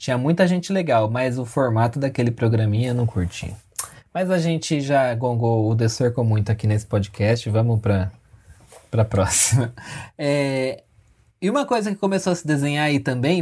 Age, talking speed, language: 20-39, 170 wpm, Portuguese